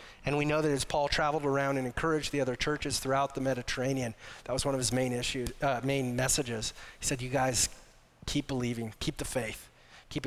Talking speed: 210 wpm